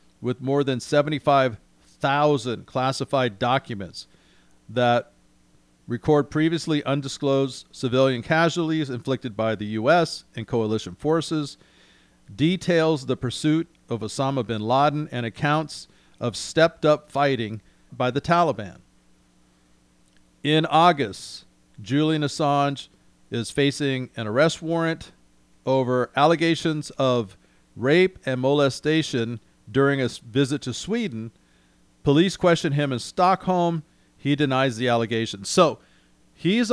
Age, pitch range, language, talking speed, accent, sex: 40-59, 110-150 Hz, English, 105 wpm, American, male